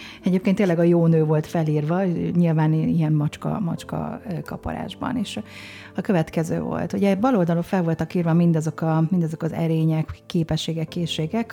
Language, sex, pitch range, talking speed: Hungarian, female, 160-185 Hz, 140 wpm